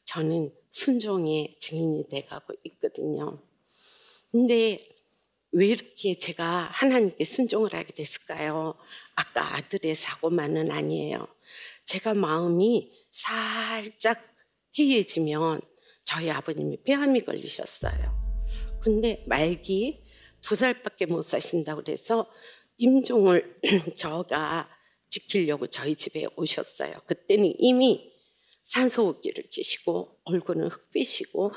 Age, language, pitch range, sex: 50-69, Korean, 165-255 Hz, female